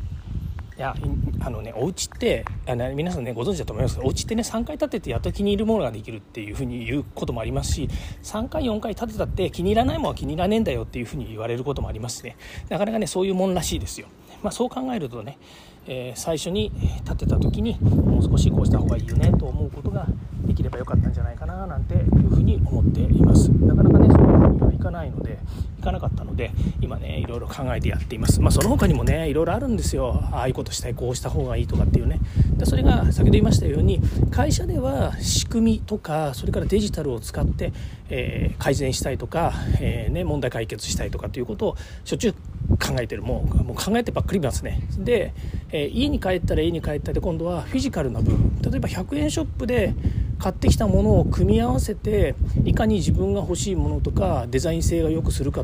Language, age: Japanese, 40-59